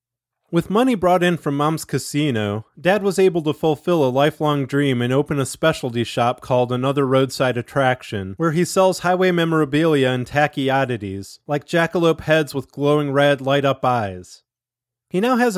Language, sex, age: English, male, 30-49